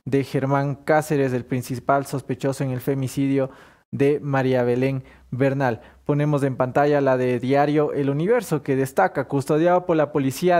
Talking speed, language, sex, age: 155 wpm, English, male, 20-39